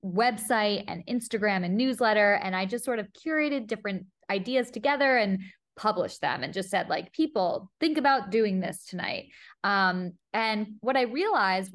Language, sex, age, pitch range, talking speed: English, female, 20-39, 190-240 Hz, 165 wpm